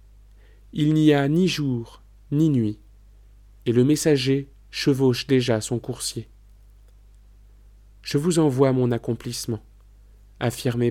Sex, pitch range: male, 100-140 Hz